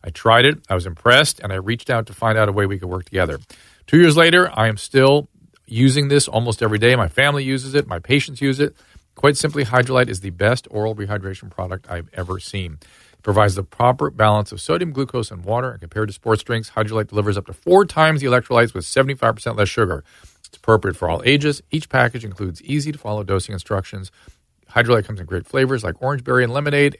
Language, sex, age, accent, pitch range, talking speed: English, male, 40-59, American, 100-135 Hz, 215 wpm